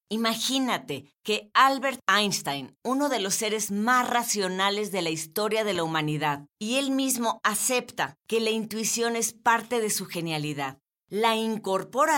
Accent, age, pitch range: Mexican, 40-59, 185-235 Hz